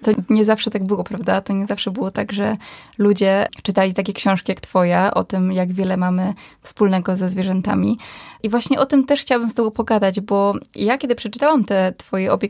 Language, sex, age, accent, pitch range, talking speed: Polish, female, 20-39, native, 190-225 Hz, 200 wpm